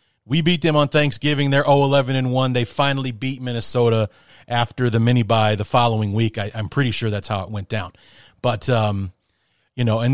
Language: English